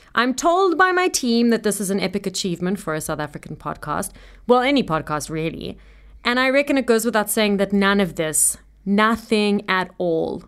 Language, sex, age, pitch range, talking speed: English, female, 30-49, 170-230 Hz, 195 wpm